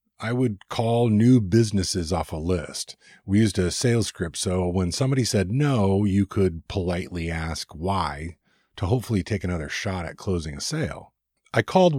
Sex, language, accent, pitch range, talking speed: male, English, American, 80-110 Hz, 170 wpm